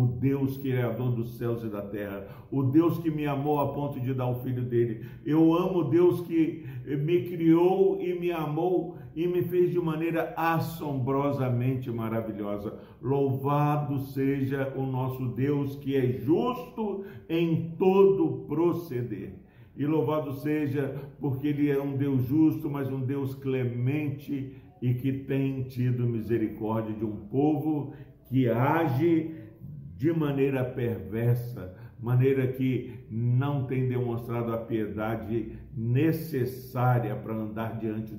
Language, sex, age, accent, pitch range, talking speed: Portuguese, male, 60-79, Brazilian, 120-150 Hz, 135 wpm